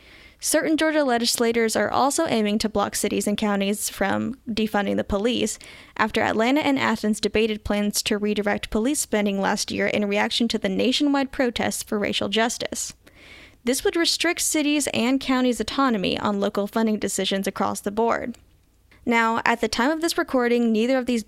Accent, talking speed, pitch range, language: American, 170 wpm, 210-265 Hz, English